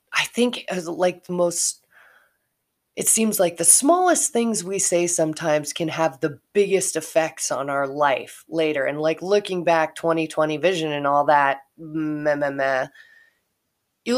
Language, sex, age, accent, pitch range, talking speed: English, female, 30-49, American, 155-205 Hz, 155 wpm